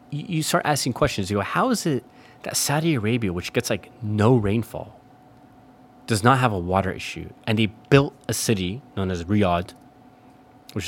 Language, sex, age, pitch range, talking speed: English, male, 30-49, 105-135 Hz, 175 wpm